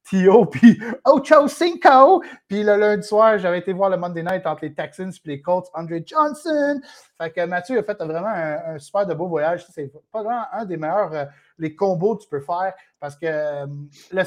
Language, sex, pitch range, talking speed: French, male, 145-190 Hz, 200 wpm